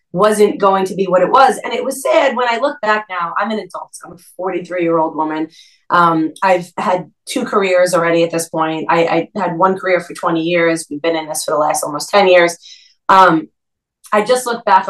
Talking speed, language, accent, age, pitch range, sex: 230 wpm, English, American, 30-49, 175-215 Hz, female